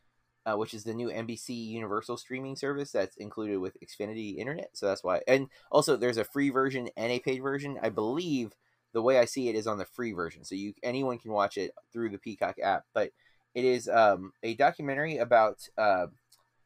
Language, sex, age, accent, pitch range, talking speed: English, male, 30-49, American, 110-130 Hz, 205 wpm